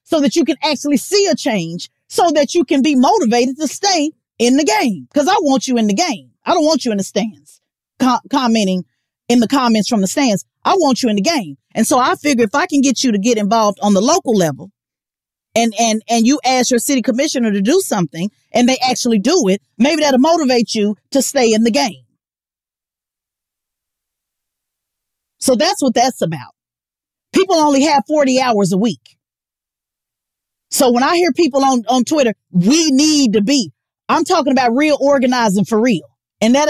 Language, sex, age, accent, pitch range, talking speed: English, female, 40-59, American, 215-285 Hz, 195 wpm